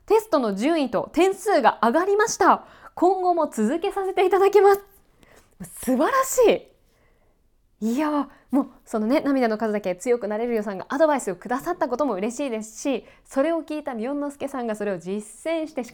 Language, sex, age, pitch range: Japanese, female, 20-39, 190-255 Hz